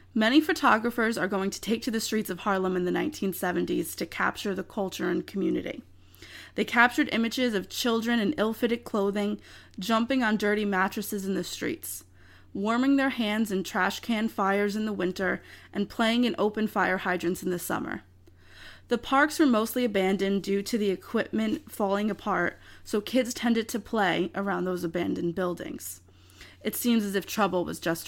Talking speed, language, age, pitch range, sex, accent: 175 wpm, English, 20-39, 180-230 Hz, female, American